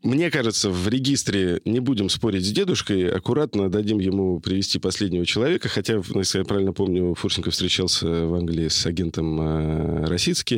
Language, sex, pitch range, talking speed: Russian, male, 85-100 Hz, 160 wpm